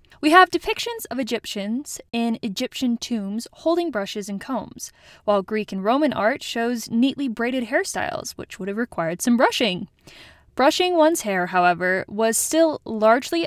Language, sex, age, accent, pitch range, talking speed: English, female, 10-29, American, 210-305 Hz, 150 wpm